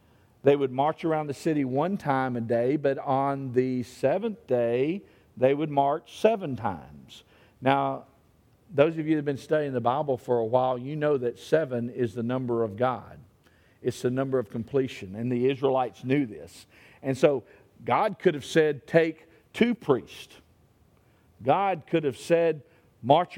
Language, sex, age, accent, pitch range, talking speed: English, male, 50-69, American, 120-175 Hz, 170 wpm